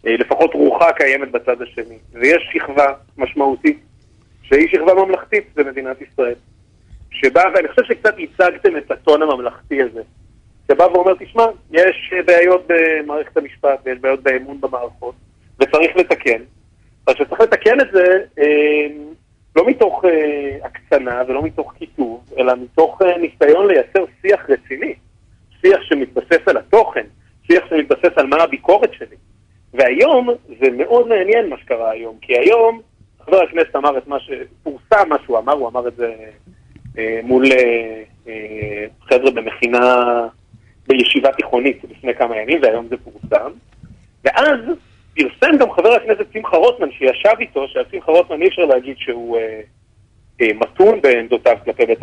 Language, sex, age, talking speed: Hebrew, male, 40-59, 135 wpm